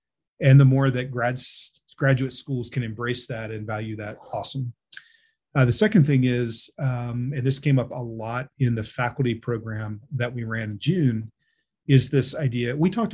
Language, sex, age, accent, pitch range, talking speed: English, male, 40-59, American, 115-135 Hz, 185 wpm